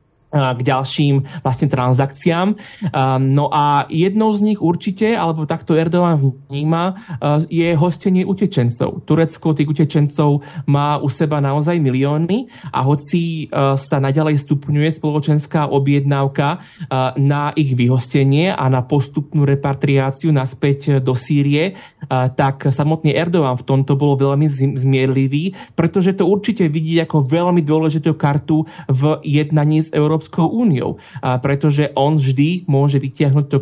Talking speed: 125 wpm